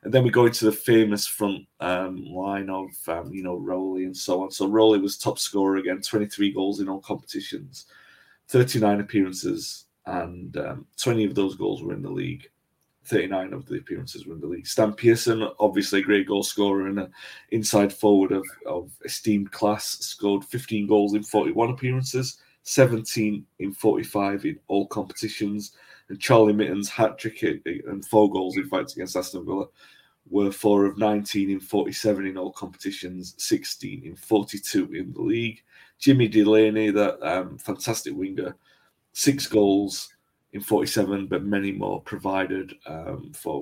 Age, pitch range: 30-49, 95-110 Hz